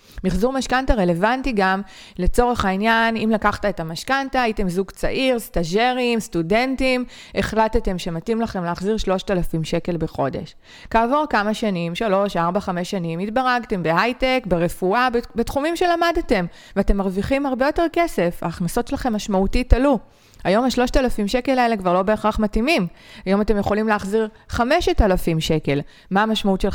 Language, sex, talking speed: Hebrew, female, 135 wpm